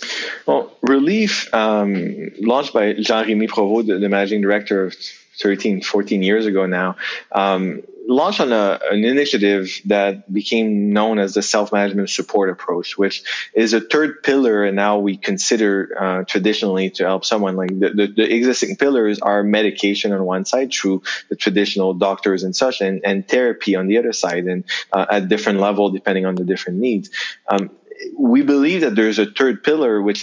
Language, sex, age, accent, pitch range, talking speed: English, male, 20-39, Canadian, 100-110 Hz, 170 wpm